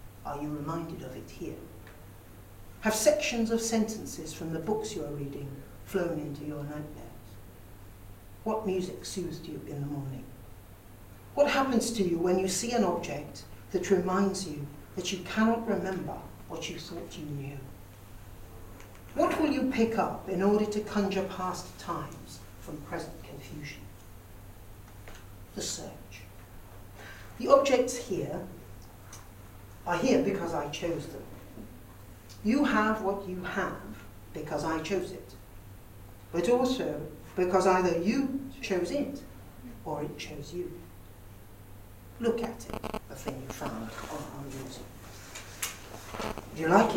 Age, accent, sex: 60-79, British, female